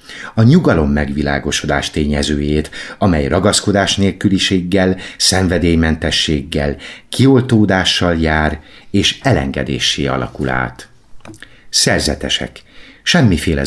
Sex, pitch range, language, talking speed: male, 75-100 Hz, Hungarian, 70 wpm